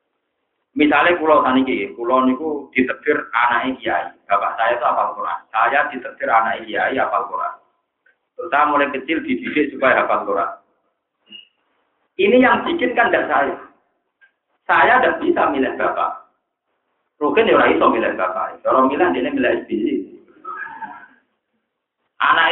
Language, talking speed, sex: Malay, 140 wpm, male